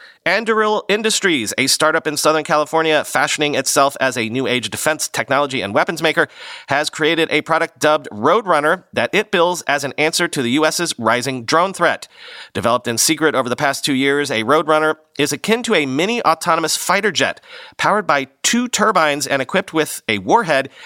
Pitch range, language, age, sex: 130-170 Hz, English, 40-59, male